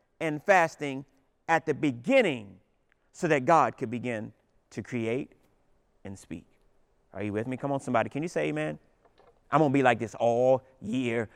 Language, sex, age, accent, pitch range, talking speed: English, male, 30-49, American, 120-150 Hz, 170 wpm